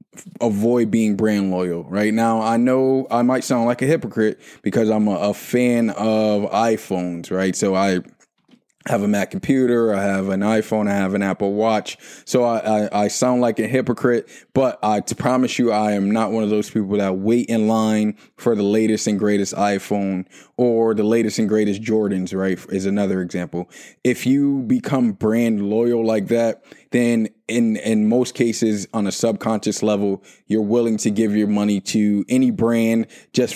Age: 20-39